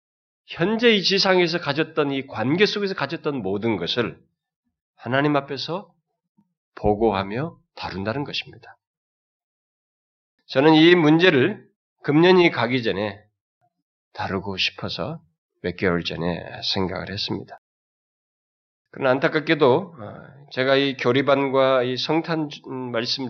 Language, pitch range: Korean, 120-170 Hz